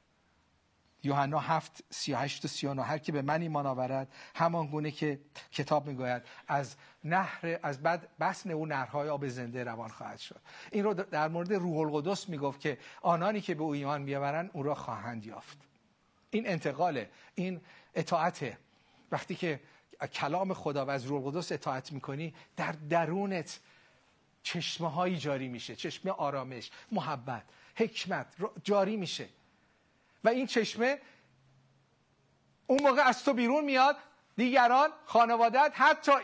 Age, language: 50-69, Persian